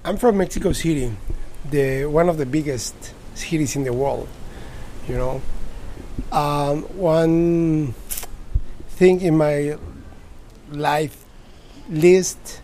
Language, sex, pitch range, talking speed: English, male, 130-170 Hz, 100 wpm